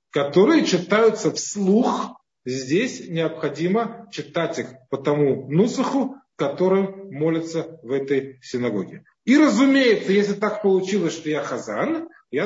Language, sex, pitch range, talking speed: Russian, male, 145-195 Hz, 115 wpm